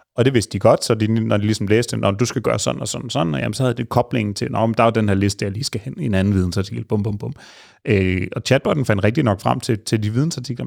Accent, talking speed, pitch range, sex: native, 310 wpm, 100-125 Hz, male